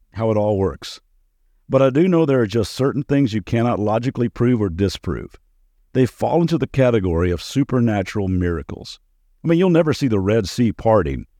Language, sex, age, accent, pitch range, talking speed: English, male, 50-69, American, 100-135 Hz, 190 wpm